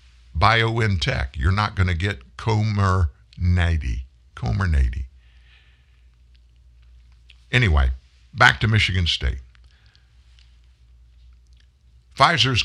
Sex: male